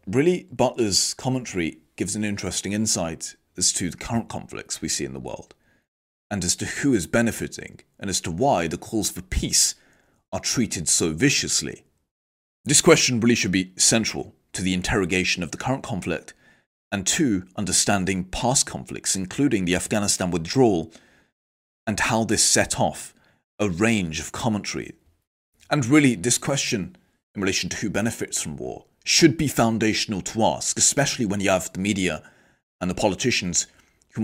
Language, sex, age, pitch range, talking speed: Italian, male, 30-49, 90-110 Hz, 160 wpm